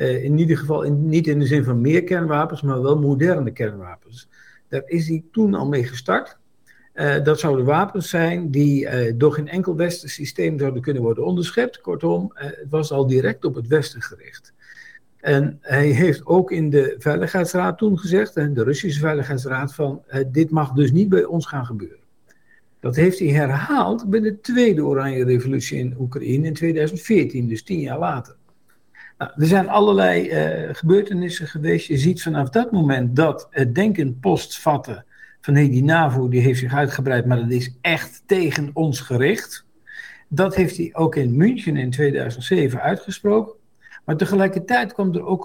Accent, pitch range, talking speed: Dutch, 140-180 Hz, 175 wpm